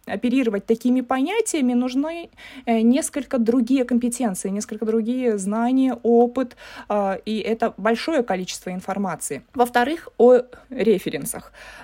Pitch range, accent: 220-270 Hz, native